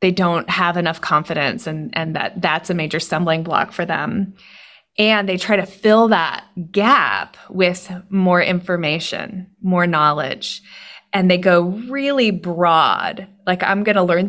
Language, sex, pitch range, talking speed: English, female, 185-225 Hz, 155 wpm